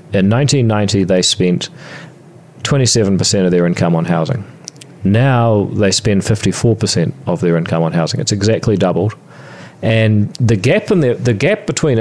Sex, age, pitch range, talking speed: male, 40-59, 95-135 Hz, 155 wpm